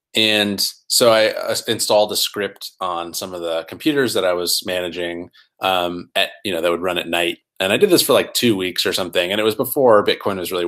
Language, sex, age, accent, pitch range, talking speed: English, male, 30-49, American, 85-110 Hz, 230 wpm